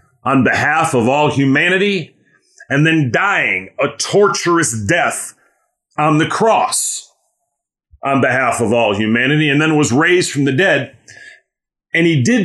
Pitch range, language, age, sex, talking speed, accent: 120-160 Hz, English, 40-59, male, 140 wpm, American